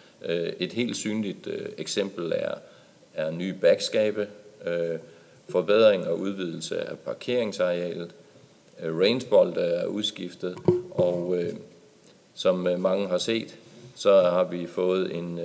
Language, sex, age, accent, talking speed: English, male, 40-59, Danish, 100 wpm